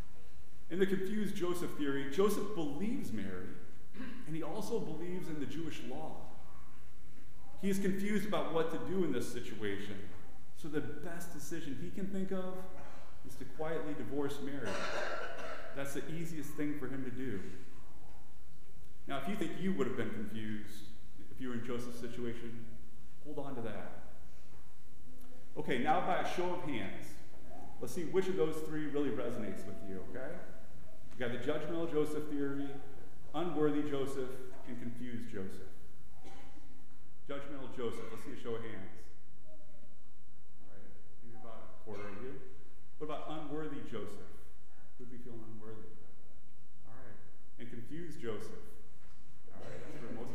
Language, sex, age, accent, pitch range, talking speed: English, male, 30-49, American, 105-155 Hz, 155 wpm